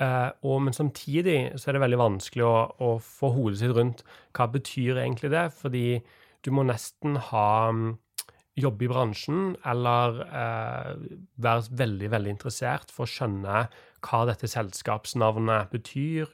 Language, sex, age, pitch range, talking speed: English, male, 30-49, 110-130 Hz, 145 wpm